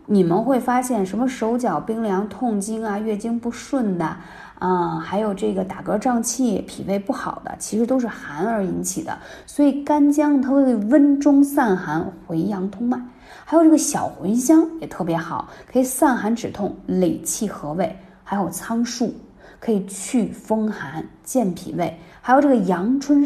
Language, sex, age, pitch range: Chinese, female, 20-39, 190-255 Hz